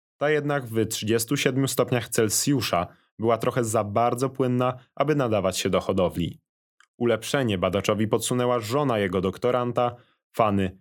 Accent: native